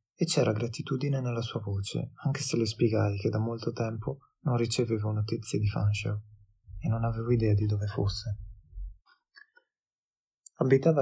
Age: 20-39